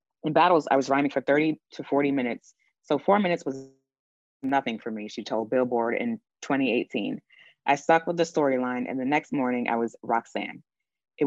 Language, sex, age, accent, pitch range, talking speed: English, female, 20-39, American, 125-155 Hz, 185 wpm